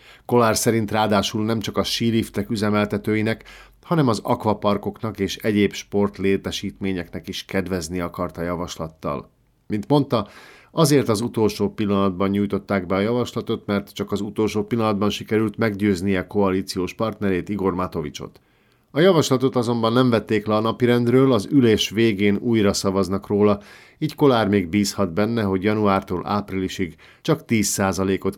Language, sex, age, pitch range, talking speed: Hungarian, male, 50-69, 95-110 Hz, 135 wpm